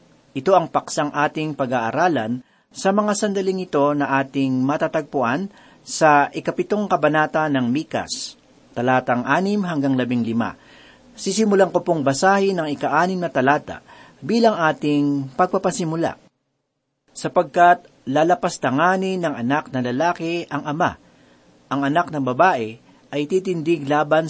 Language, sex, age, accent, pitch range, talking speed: Filipino, male, 40-59, native, 135-185 Hz, 120 wpm